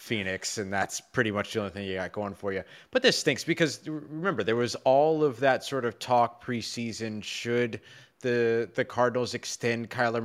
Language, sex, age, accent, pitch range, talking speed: English, male, 20-39, American, 95-120 Hz, 195 wpm